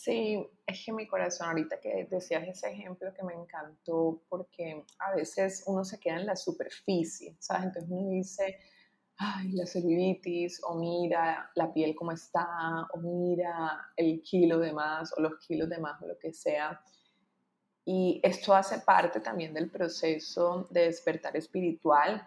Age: 20-39